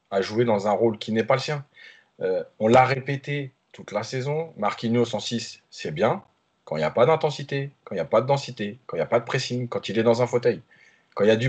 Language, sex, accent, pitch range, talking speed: French, male, French, 115-145 Hz, 275 wpm